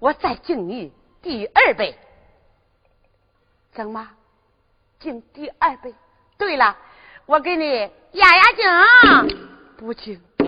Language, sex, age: Chinese, female, 40-59